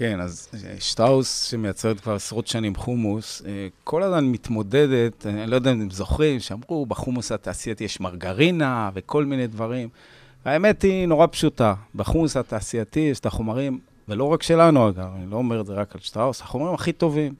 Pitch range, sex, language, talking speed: 105-140 Hz, male, Hebrew, 165 wpm